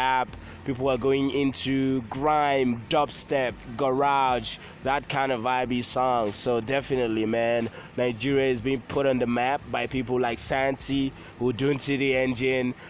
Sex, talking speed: male, 140 wpm